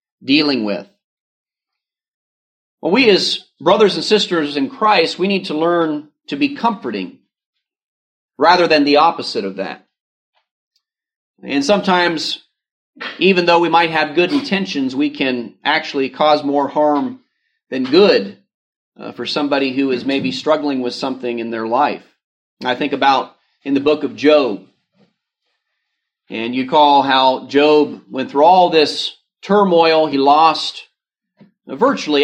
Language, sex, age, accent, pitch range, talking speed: English, male, 40-59, American, 140-205 Hz, 135 wpm